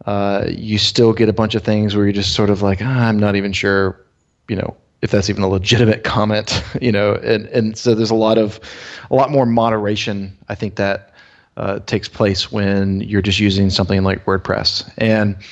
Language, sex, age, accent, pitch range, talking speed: English, male, 20-39, American, 100-115 Hz, 215 wpm